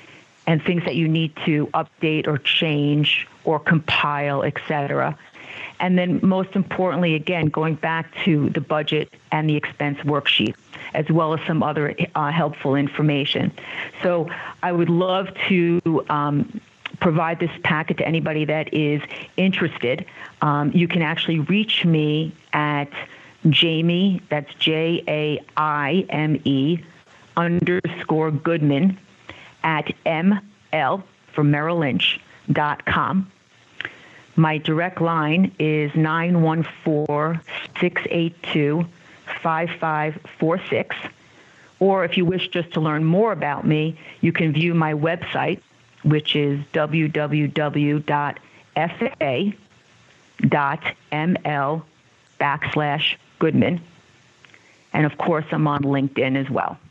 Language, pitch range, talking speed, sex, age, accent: English, 150-170 Hz, 105 wpm, female, 50-69, American